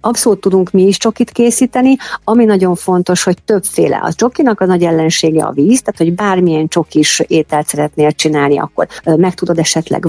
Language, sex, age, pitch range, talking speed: Hungarian, female, 50-69, 160-190 Hz, 175 wpm